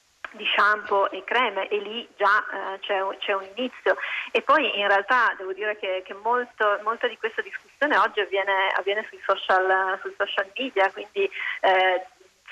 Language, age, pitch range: Italian, 30-49, 190-225 Hz